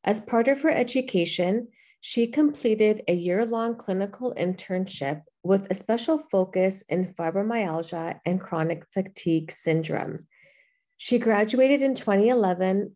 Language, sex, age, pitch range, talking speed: English, female, 40-59, 175-235 Hz, 120 wpm